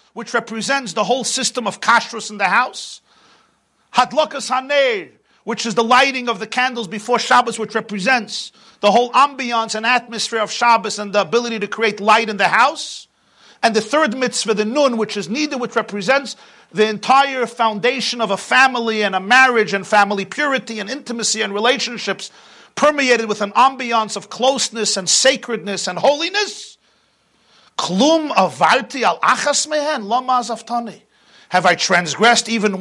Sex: male